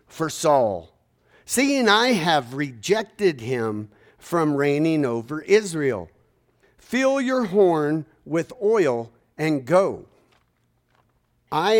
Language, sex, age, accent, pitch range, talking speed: English, male, 50-69, American, 125-195 Hz, 95 wpm